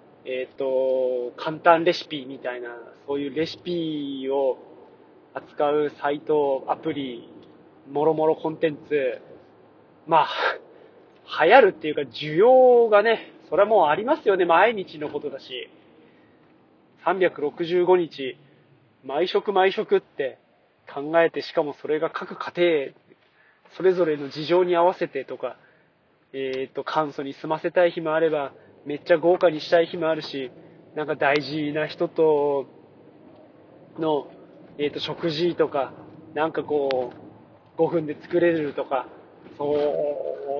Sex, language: male, Japanese